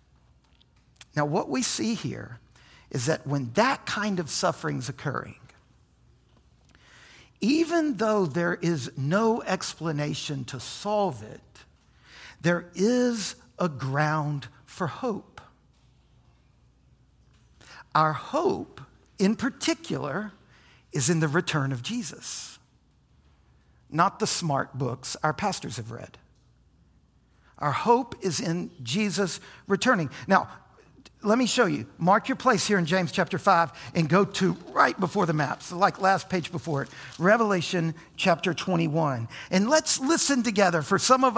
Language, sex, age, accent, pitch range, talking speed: English, male, 60-79, American, 150-205 Hz, 130 wpm